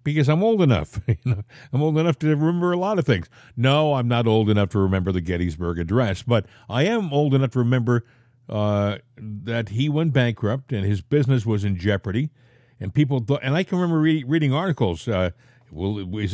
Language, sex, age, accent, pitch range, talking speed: English, male, 50-69, American, 115-155 Hz, 185 wpm